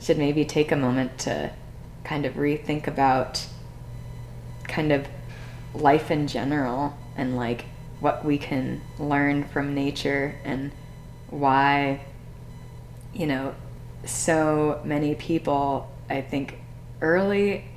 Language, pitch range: English, 130-150 Hz